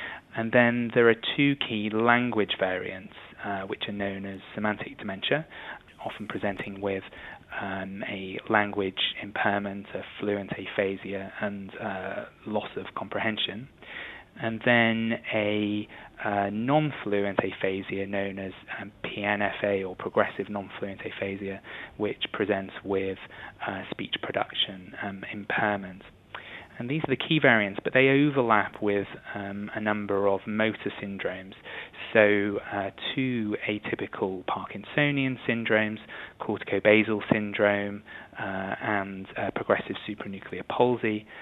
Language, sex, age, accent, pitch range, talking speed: English, male, 20-39, British, 100-115 Hz, 120 wpm